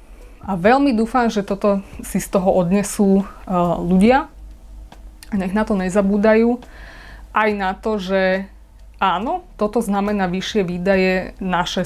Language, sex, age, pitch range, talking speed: Slovak, female, 20-39, 180-205 Hz, 130 wpm